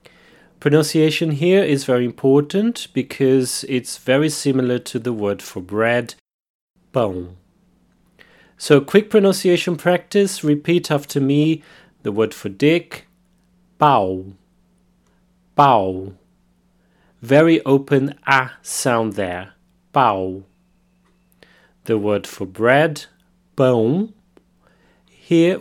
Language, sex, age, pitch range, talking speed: English, male, 30-49, 115-175 Hz, 95 wpm